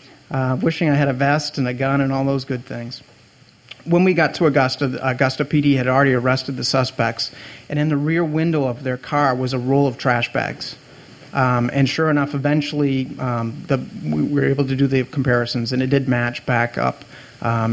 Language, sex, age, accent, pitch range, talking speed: English, male, 40-59, American, 125-145 Hz, 205 wpm